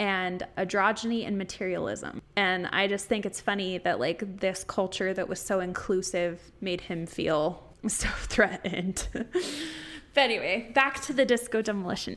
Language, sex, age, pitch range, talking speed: English, female, 20-39, 190-245 Hz, 150 wpm